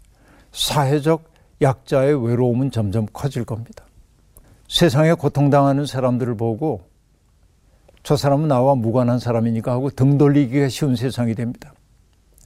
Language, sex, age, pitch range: Korean, male, 60-79, 115-145 Hz